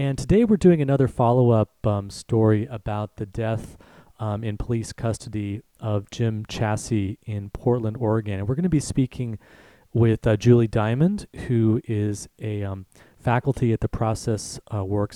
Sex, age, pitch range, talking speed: male, 30-49, 105-120 Hz, 160 wpm